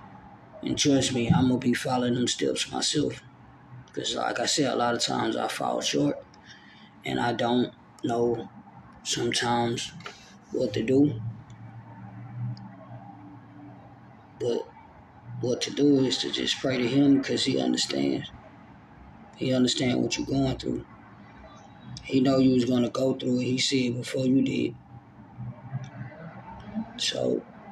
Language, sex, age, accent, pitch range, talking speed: English, male, 20-39, American, 120-130 Hz, 135 wpm